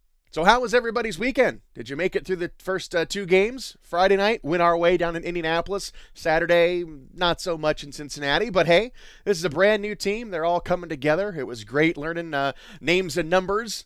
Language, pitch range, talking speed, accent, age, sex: English, 135-185 Hz, 210 wpm, American, 30-49, male